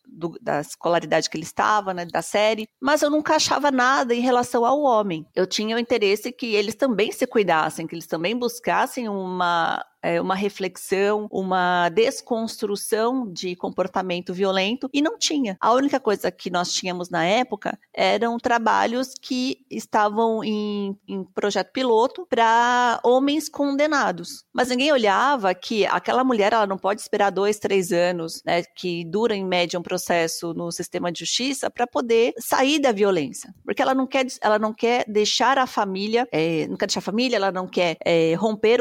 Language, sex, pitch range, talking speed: Portuguese, female, 190-250 Hz, 170 wpm